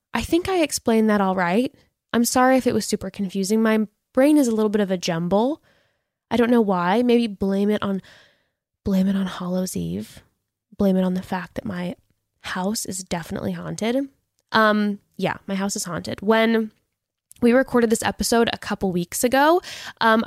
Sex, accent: female, American